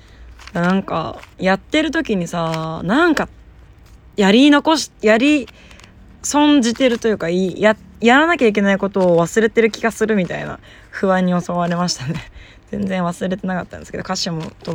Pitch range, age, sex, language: 160-210 Hz, 20-39, female, Japanese